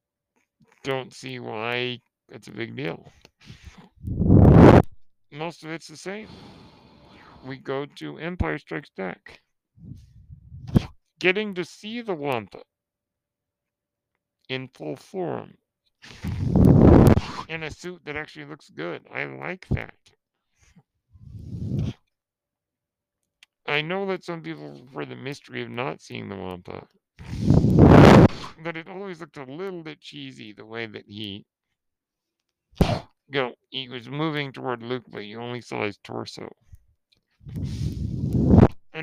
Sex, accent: male, American